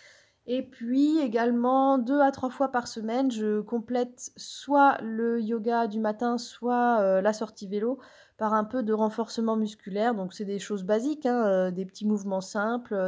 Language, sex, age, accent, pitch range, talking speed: French, female, 20-39, French, 195-245 Hz, 165 wpm